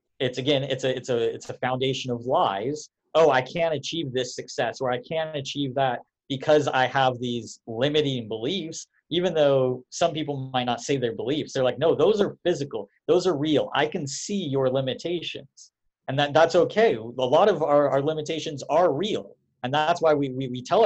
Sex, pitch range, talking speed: male, 120-155 Hz, 200 wpm